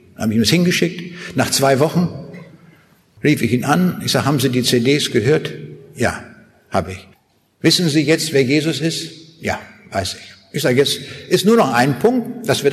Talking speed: 200 wpm